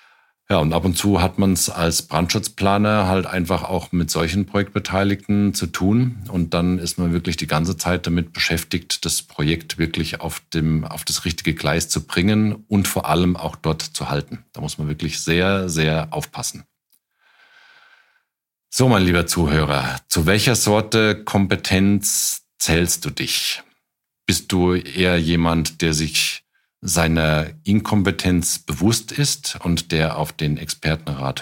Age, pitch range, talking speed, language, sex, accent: 50-69, 80-100 Hz, 150 wpm, German, male, German